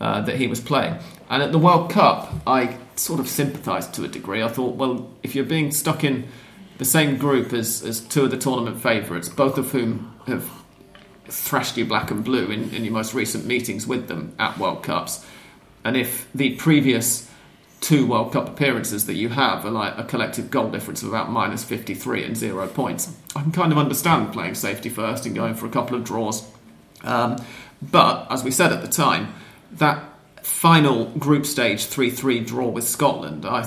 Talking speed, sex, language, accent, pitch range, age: 200 wpm, male, English, British, 115-145 Hz, 40-59